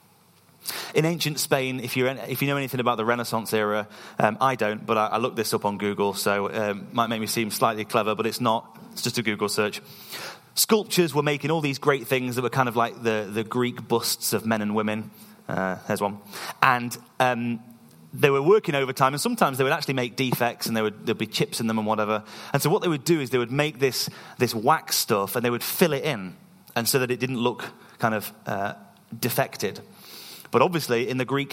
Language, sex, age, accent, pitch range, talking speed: English, male, 30-49, British, 110-140 Hz, 235 wpm